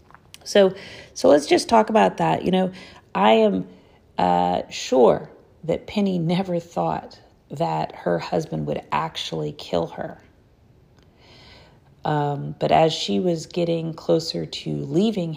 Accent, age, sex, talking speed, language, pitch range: American, 40-59, female, 130 wpm, English, 120-190 Hz